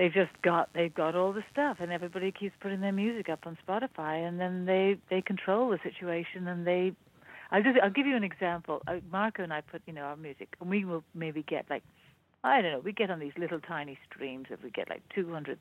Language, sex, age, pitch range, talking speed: English, female, 60-79, 160-195 Hz, 240 wpm